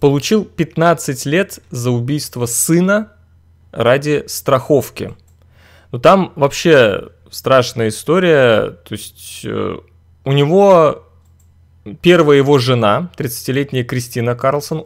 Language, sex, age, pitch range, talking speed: Russian, male, 20-39, 115-145 Hz, 95 wpm